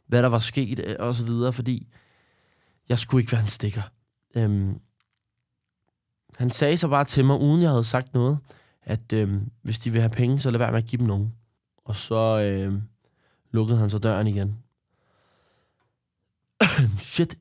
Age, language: 20-39, Danish